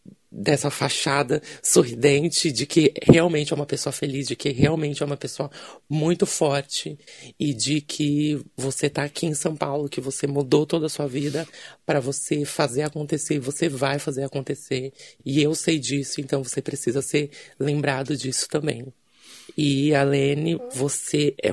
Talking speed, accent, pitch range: 160 wpm, Brazilian, 140-155 Hz